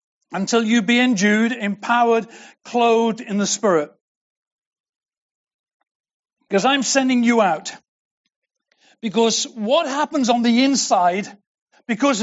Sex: male